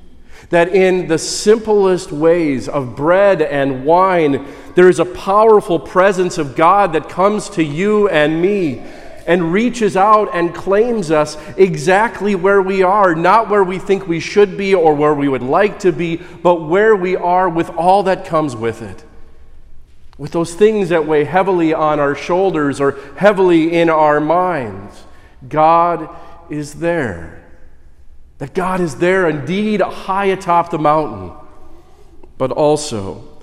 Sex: male